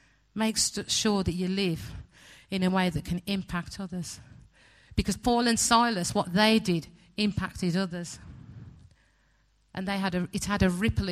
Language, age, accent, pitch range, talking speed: English, 50-69, British, 170-200 Hz, 140 wpm